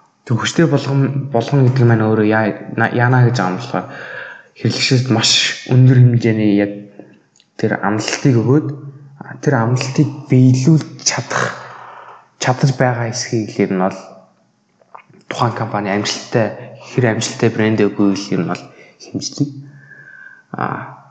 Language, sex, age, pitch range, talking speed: English, male, 20-39, 105-135 Hz, 100 wpm